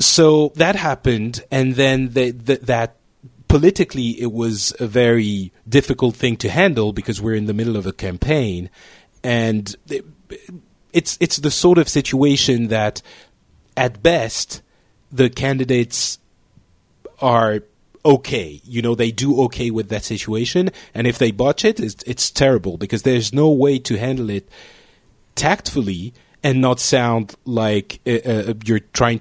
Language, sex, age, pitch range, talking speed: English, male, 30-49, 105-130 Hz, 145 wpm